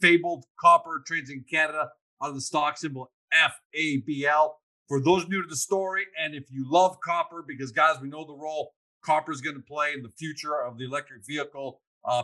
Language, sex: English, male